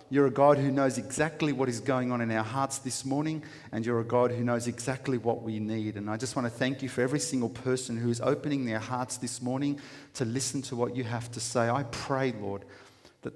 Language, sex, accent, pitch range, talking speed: English, male, Australian, 110-150 Hz, 245 wpm